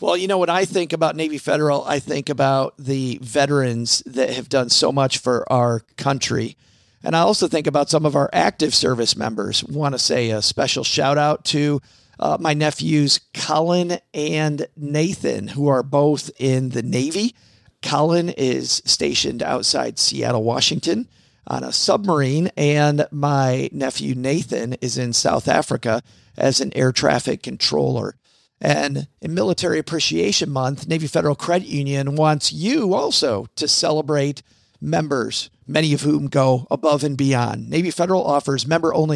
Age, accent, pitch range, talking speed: 40-59, American, 135-165 Hz, 155 wpm